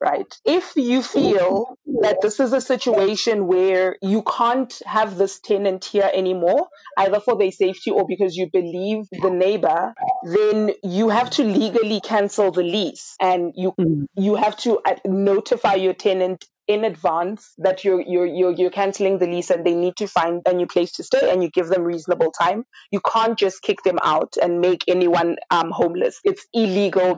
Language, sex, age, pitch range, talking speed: English, female, 20-39, 180-220 Hz, 180 wpm